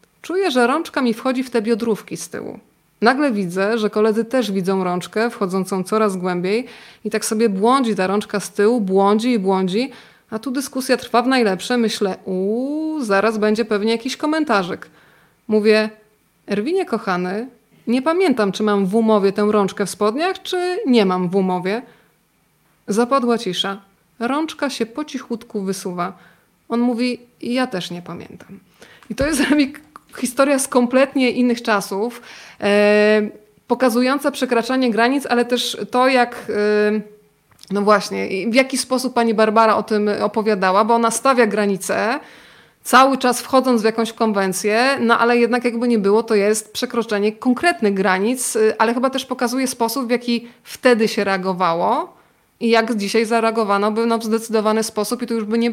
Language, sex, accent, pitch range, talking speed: Polish, female, native, 205-245 Hz, 155 wpm